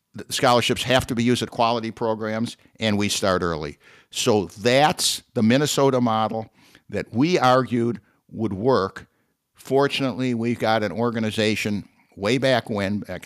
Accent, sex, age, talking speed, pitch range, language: American, male, 60-79, 145 wpm, 100-125 Hz, English